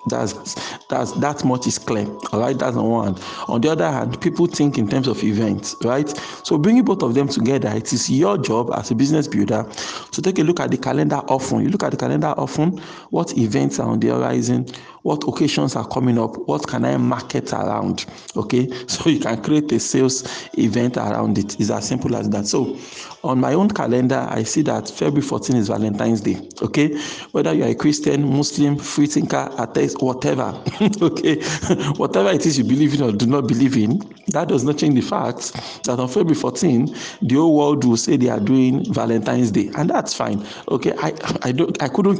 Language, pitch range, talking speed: English, 115-155 Hz, 210 wpm